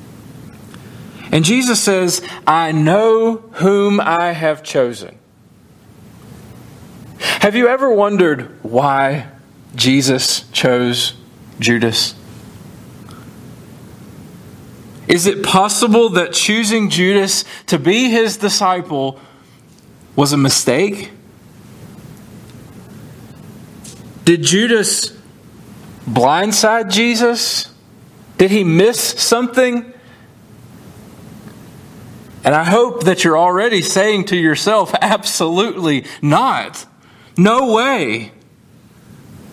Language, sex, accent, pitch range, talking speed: English, male, American, 135-205 Hz, 75 wpm